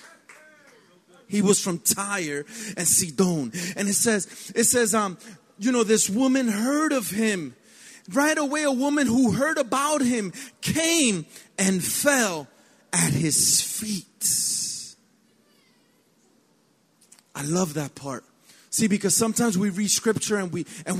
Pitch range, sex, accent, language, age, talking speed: 210-285 Hz, male, American, English, 30-49, 130 wpm